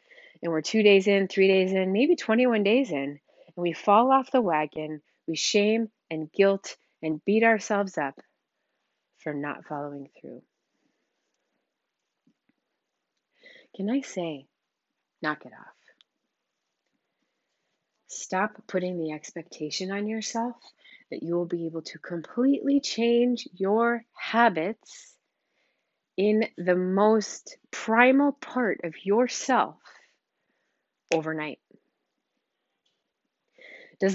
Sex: female